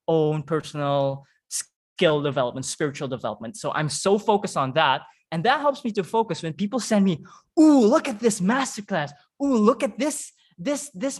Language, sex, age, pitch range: English, male, 20-39, 145-205 Hz